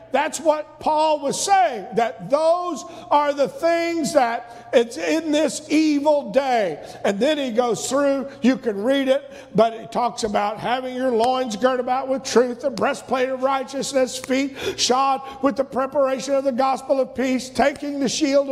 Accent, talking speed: American, 170 wpm